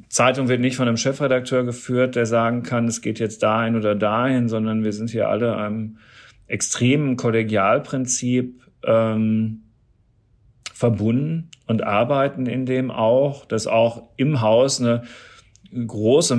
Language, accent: German, German